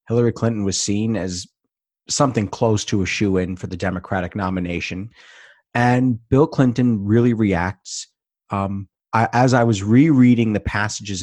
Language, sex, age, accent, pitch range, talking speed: English, male, 30-49, American, 95-115 Hz, 150 wpm